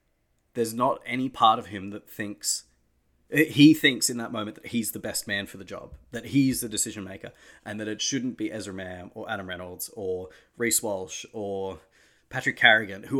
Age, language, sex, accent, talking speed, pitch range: 30-49, English, male, Australian, 195 wpm, 100-120 Hz